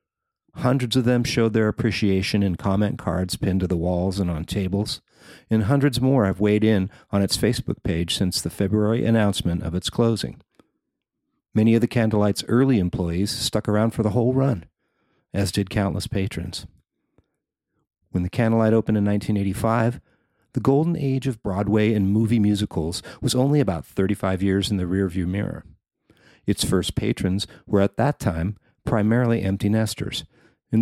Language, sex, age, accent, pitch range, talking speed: English, male, 50-69, American, 100-125 Hz, 160 wpm